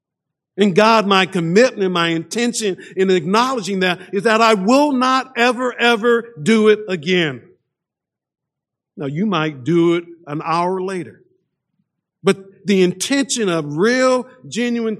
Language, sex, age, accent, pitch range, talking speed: English, male, 50-69, American, 135-205 Hz, 135 wpm